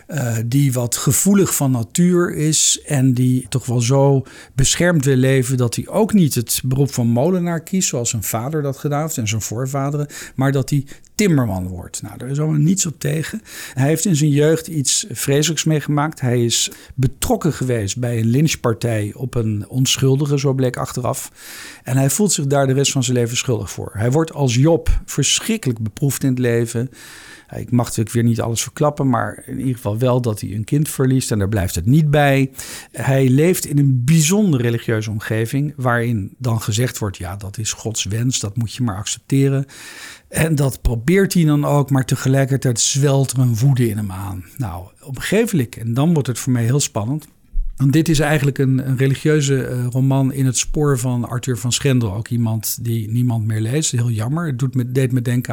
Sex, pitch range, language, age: male, 120-145 Hz, English, 50-69